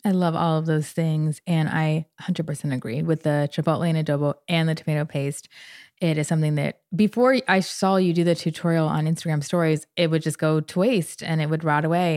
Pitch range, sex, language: 160-190 Hz, female, English